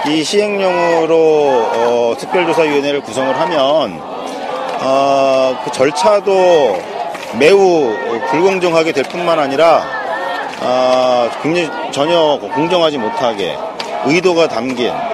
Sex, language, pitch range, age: male, Korean, 130-190 Hz, 40-59